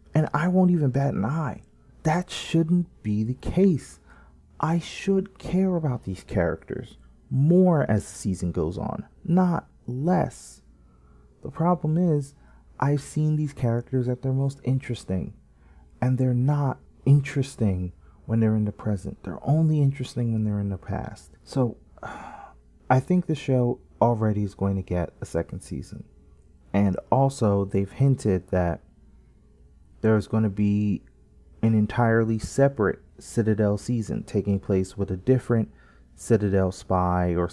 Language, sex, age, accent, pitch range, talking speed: English, male, 30-49, American, 85-125 Hz, 140 wpm